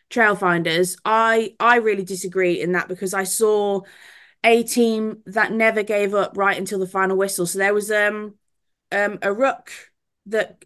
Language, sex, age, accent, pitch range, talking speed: English, female, 20-39, British, 185-220 Hz, 165 wpm